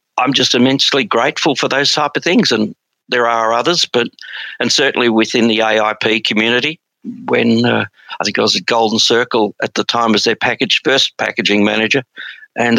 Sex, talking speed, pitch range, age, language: male, 185 wpm, 110-125 Hz, 60-79, English